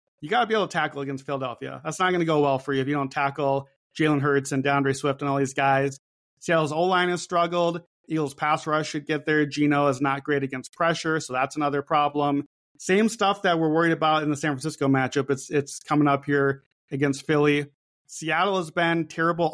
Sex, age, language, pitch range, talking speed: male, 30-49, English, 145-180 Hz, 220 wpm